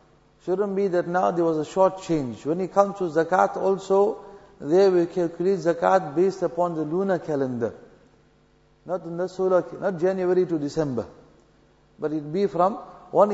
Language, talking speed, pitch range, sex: English, 165 wpm, 165-195 Hz, male